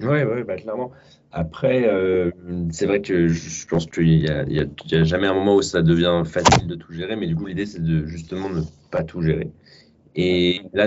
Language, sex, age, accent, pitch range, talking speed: French, male, 20-39, French, 80-95 Hz, 220 wpm